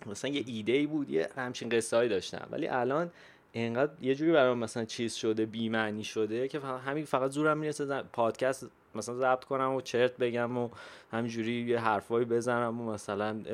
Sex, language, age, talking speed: male, Persian, 20-39, 185 wpm